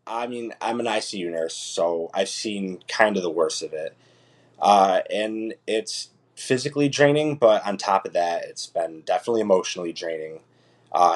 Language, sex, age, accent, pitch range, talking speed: English, male, 20-39, American, 90-135 Hz, 165 wpm